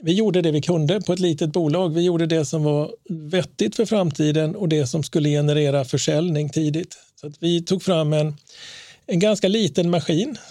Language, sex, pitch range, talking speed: Swedish, male, 155-185 Hz, 195 wpm